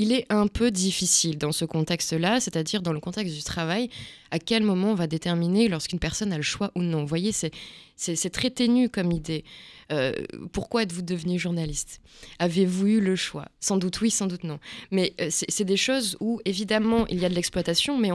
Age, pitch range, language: 20-39, 165-210 Hz, French